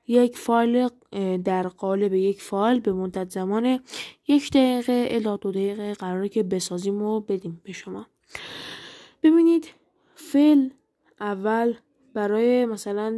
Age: 10-29